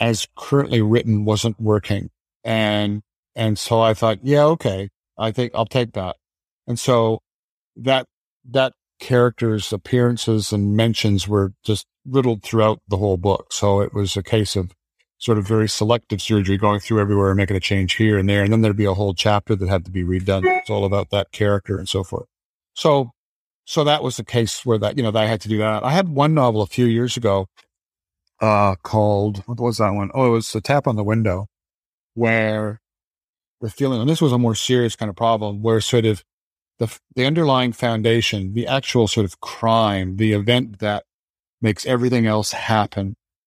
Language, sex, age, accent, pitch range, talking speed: English, male, 50-69, American, 100-120 Hz, 195 wpm